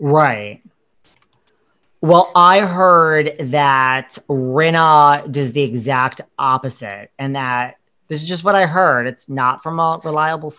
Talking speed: 130 wpm